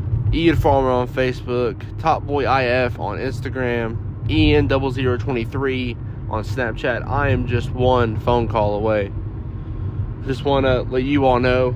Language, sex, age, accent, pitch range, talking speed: English, male, 20-39, American, 110-130 Hz, 135 wpm